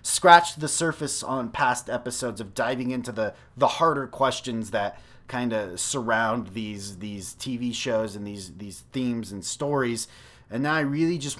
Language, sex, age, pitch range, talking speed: English, male, 30-49, 110-140 Hz, 170 wpm